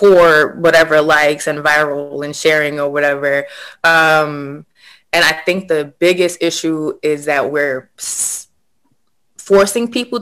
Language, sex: English, female